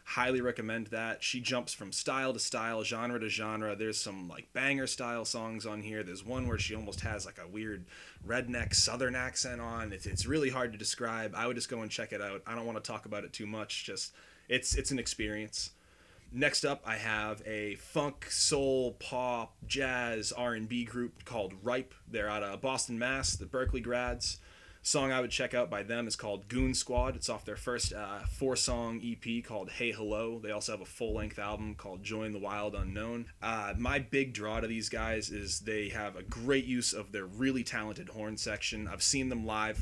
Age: 20-39